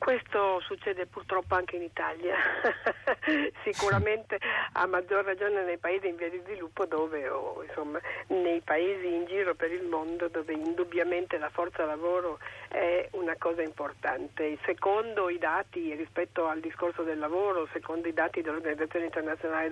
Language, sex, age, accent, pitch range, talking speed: Italian, female, 50-69, native, 160-195 Hz, 145 wpm